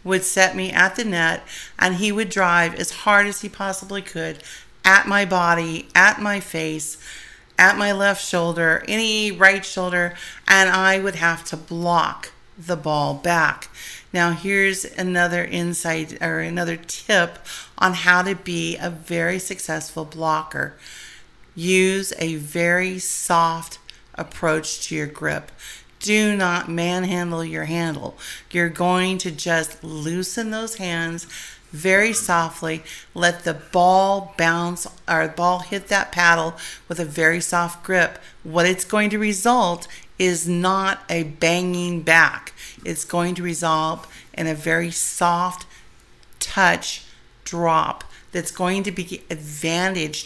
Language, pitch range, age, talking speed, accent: English, 165-190 Hz, 40-59, 135 wpm, American